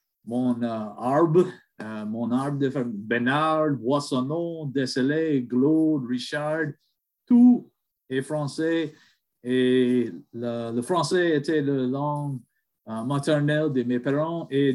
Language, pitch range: English, 125-155 Hz